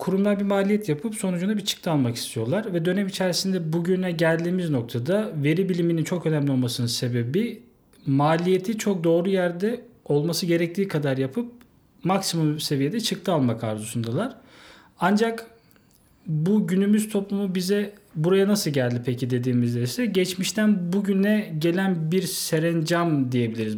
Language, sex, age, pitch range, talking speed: Turkish, male, 40-59, 140-195 Hz, 130 wpm